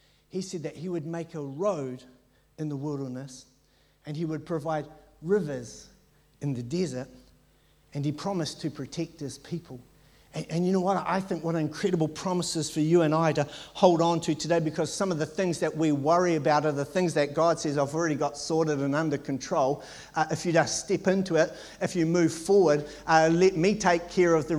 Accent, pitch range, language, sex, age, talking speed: Australian, 140-170 Hz, English, male, 50-69, 205 wpm